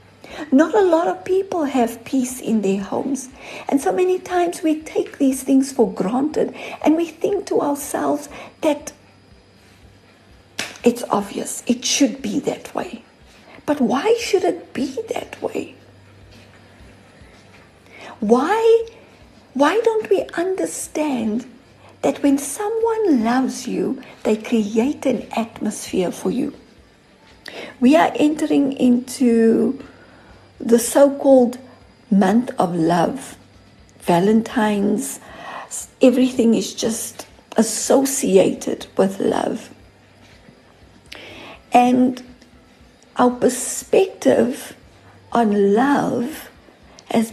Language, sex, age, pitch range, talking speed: English, female, 60-79, 230-305 Hz, 100 wpm